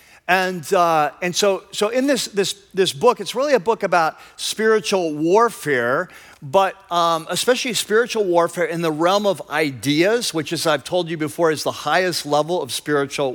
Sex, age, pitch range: male, 50-69, 155-205 Hz